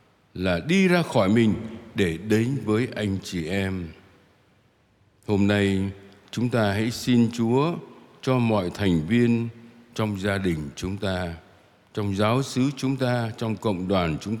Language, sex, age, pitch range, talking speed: Vietnamese, male, 60-79, 95-115 Hz, 150 wpm